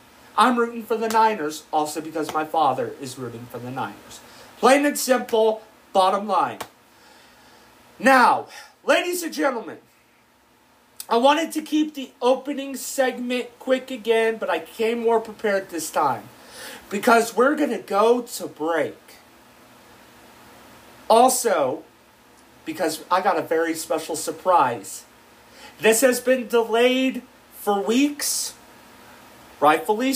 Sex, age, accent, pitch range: male, 40-59, American, 155-250 Hz